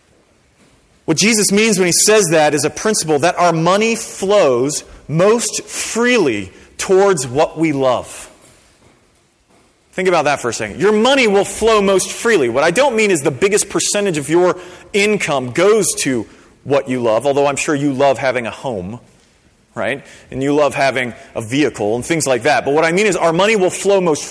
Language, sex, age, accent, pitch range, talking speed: English, male, 30-49, American, 140-205 Hz, 190 wpm